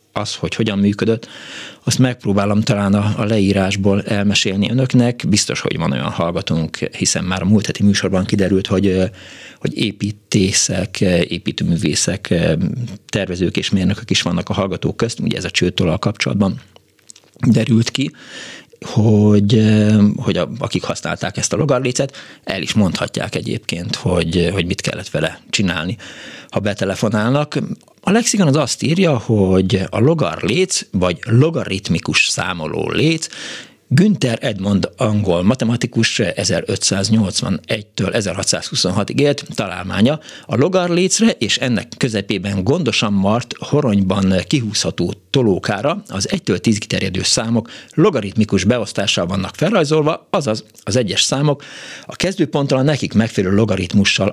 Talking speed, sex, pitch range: 125 wpm, male, 95-125 Hz